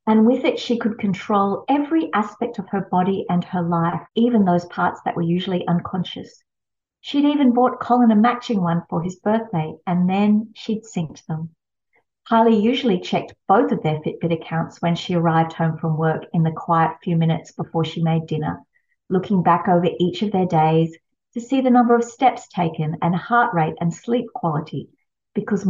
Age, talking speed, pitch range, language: 50-69, 185 wpm, 165-225 Hz, English